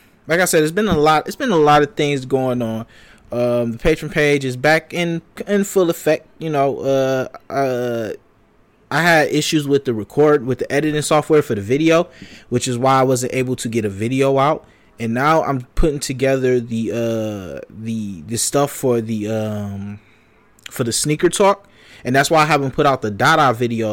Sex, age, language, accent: male, 20-39, English, American